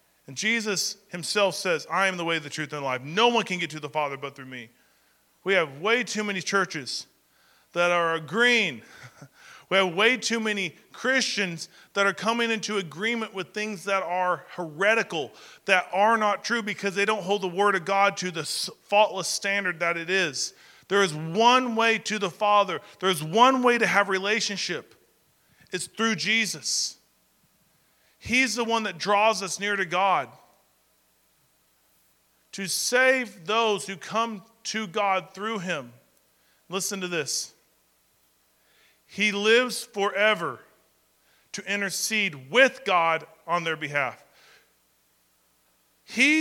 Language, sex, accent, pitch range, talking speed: English, male, American, 175-220 Hz, 150 wpm